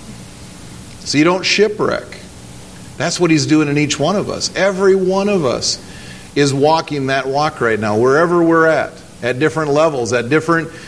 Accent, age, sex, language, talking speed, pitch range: American, 50-69, male, English, 170 wpm, 135-180 Hz